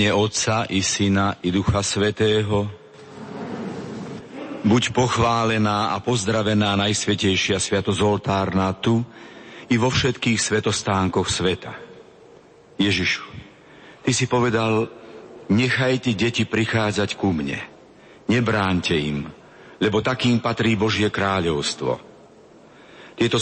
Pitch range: 100-115 Hz